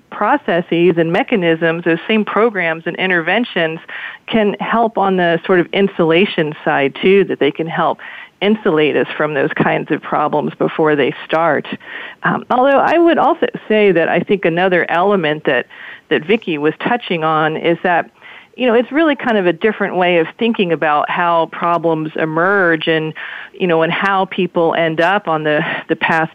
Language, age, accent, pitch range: English, 40-59, American, 160-195 Hz